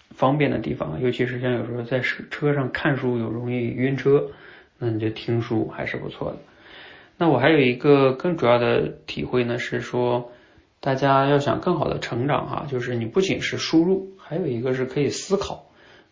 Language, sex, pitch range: Chinese, male, 115-135 Hz